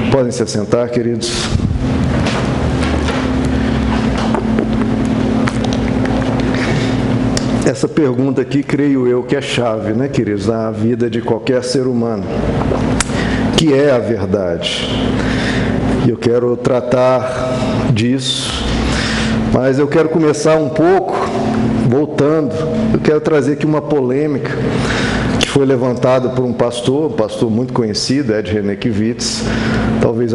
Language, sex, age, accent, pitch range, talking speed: Portuguese, male, 50-69, Brazilian, 115-140 Hz, 110 wpm